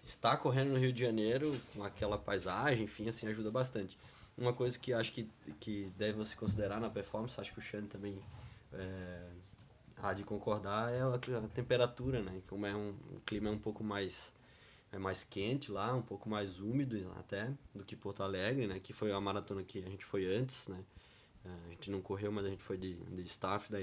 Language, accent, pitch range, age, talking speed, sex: Portuguese, Brazilian, 100-120 Hz, 20-39, 205 wpm, male